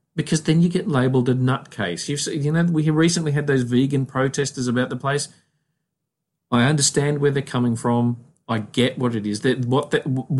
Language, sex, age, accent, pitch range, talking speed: English, male, 40-59, Australian, 115-150 Hz, 190 wpm